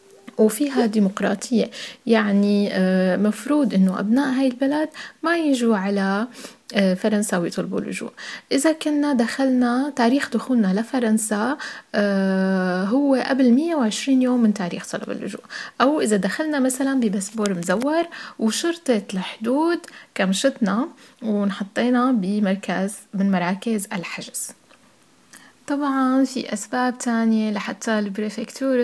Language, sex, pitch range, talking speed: French, female, 195-250 Hz, 100 wpm